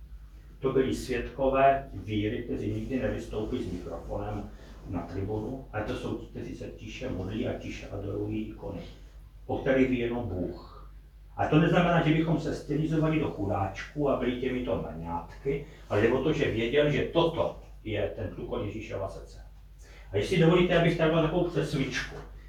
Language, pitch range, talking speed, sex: Slovak, 100-145 Hz, 150 wpm, male